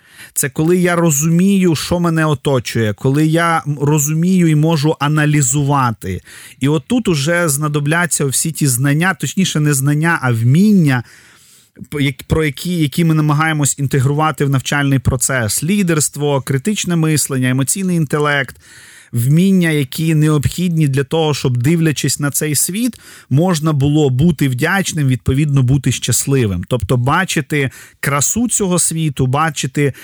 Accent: native